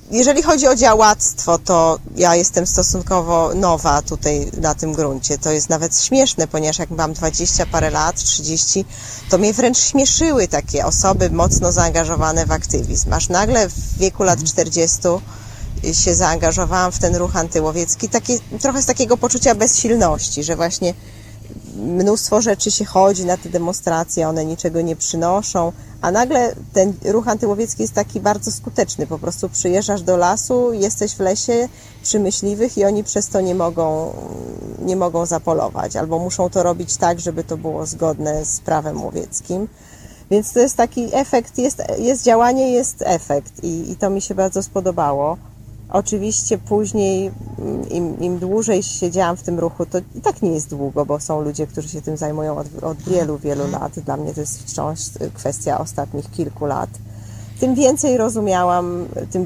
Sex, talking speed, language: female, 160 wpm, Polish